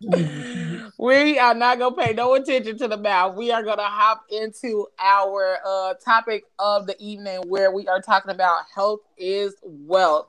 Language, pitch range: English, 175-215 Hz